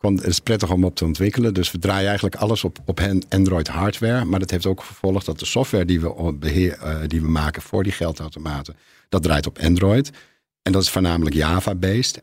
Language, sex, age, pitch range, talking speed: Dutch, male, 50-69, 75-95 Hz, 210 wpm